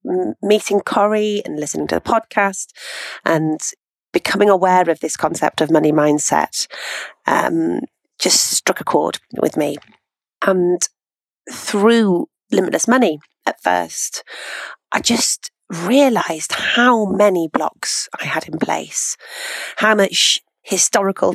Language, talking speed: English, 120 wpm